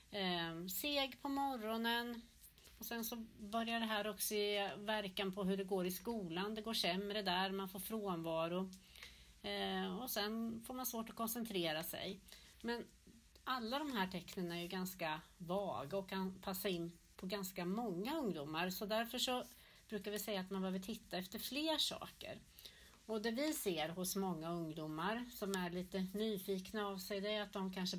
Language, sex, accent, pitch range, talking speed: English, female, Swedish, 175-215 Hz, 175 wpm